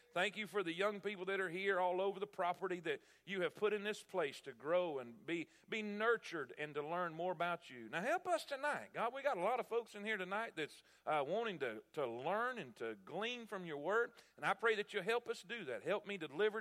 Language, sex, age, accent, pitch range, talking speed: English, male, 40-59, American, 190-235 Hz, 255 wpm